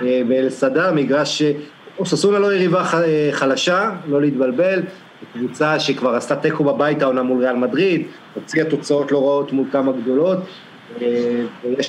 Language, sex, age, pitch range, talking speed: Hebrew, male, 40-59, 135-165 Hz, 125 wpm